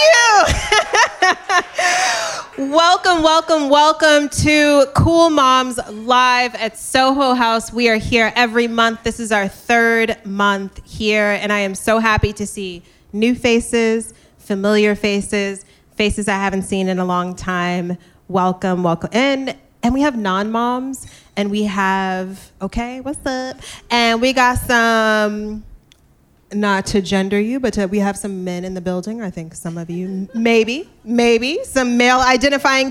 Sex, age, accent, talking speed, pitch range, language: female, 20-39, American, 145 wpm, 195-255 Hz, English